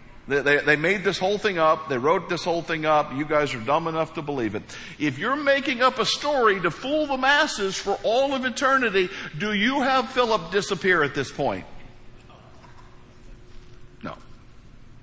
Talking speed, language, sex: 180 wpm, English, male